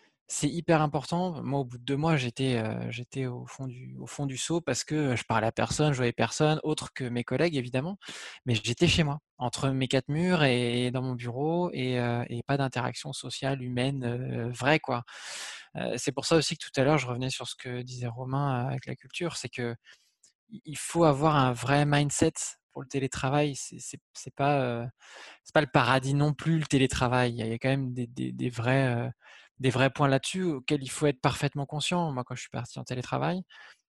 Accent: French